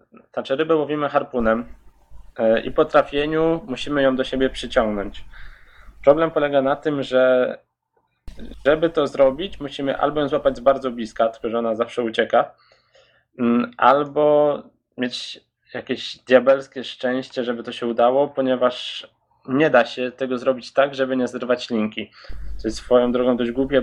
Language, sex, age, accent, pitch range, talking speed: Polish, male, 20-39, native, 120-135 Hz, 145 wpm